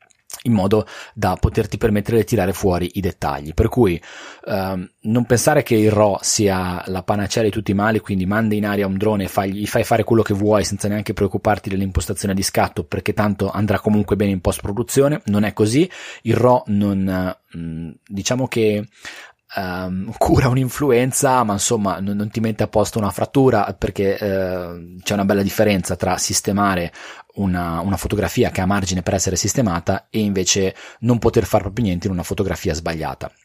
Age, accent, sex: 20-39, native, male